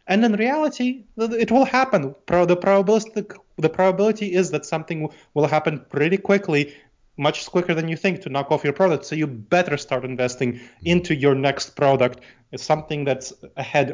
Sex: male